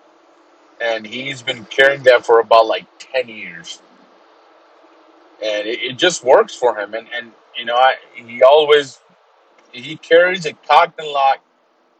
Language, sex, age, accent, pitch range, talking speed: English, male, 30-49, American, 120-180 Hz, 150 wpm